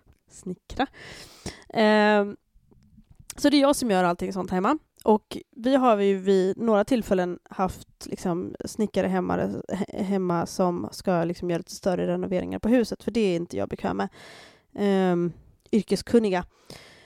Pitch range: 190-250 Hz